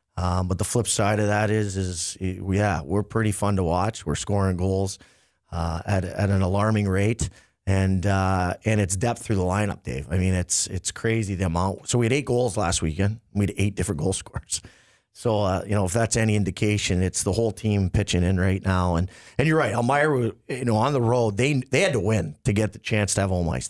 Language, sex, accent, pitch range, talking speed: English, male, American, 90-110 Hz, 235 wpm